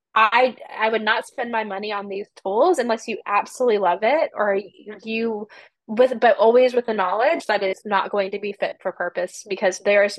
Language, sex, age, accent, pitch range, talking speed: English, female, 20-39, American, 195-245 Hz, 205 wpm